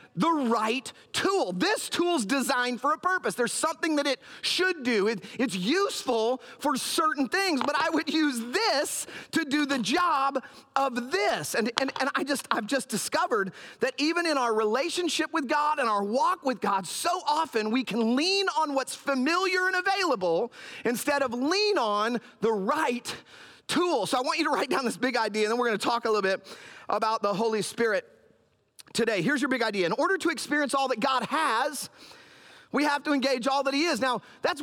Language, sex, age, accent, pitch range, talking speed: English, male, 40-59, American, 240-320 Hz, 200 wpm